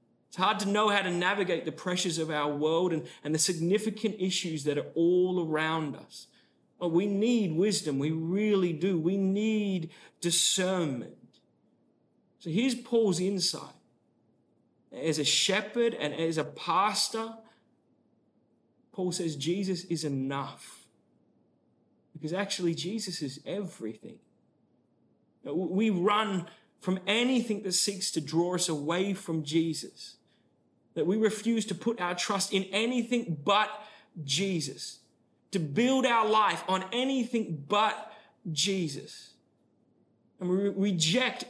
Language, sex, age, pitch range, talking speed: English, male, 30-49, 160-210 Hz, 125 wpm